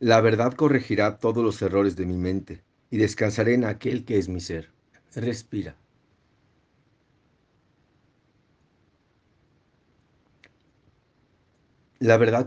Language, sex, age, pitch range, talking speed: Spanish, male, 50-69, 95-115 Hz, 95 wpm